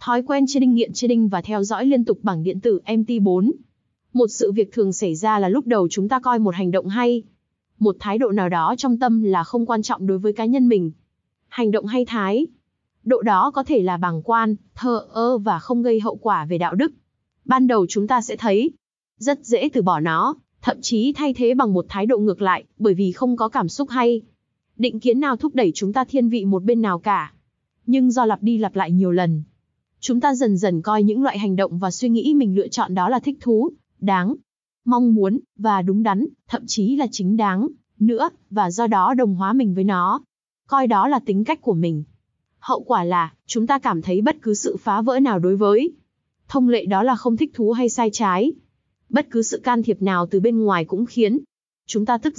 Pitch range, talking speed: 195-250 Hz, 235 wpm